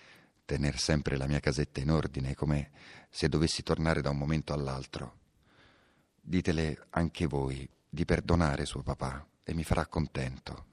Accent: native